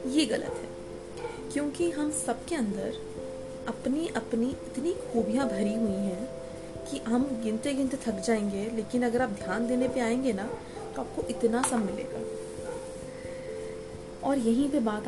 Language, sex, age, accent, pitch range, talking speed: Hindi, female, 30-49, native, 205-255 Hz, 145 wpm